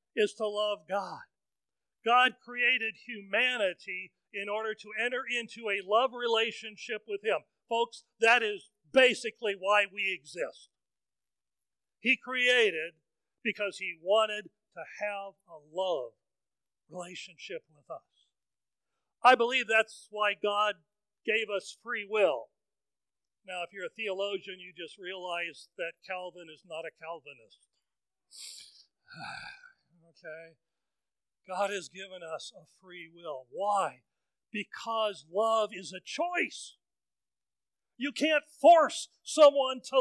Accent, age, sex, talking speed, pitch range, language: American, 40-59, male, 115 wpm, 170-240 Hz, English